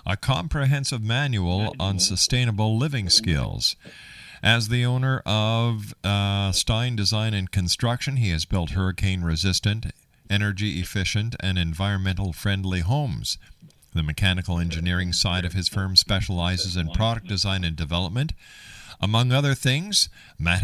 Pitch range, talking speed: 95-115 Hz, 120 wpm